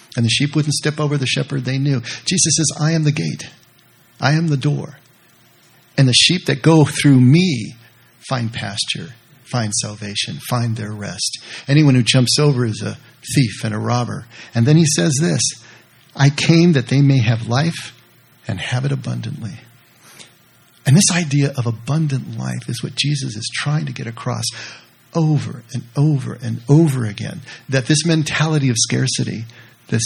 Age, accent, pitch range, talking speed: 50-69, American, 115-150 Hz, 170 wpm